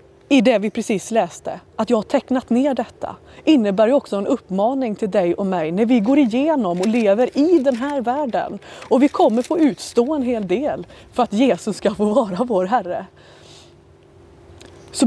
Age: 30-49